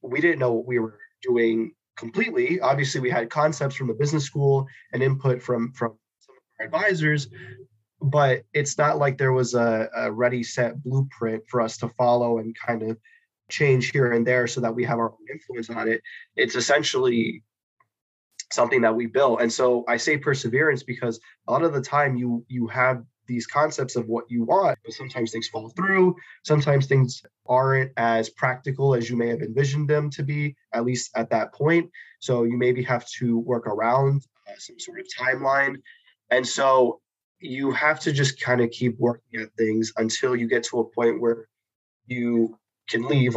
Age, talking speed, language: 20-39, 190 wpm, English